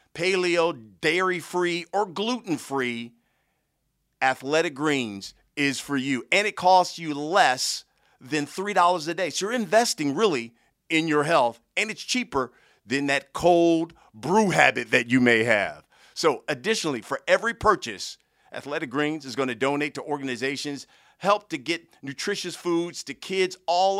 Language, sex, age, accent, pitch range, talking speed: English, male, 50-69, American, 135-175 Hz, 145 wpm